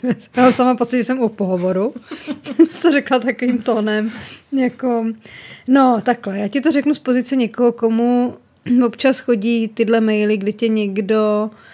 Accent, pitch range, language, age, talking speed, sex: native, 205-245 Hz, Czech, 20-39, 150 wpm, female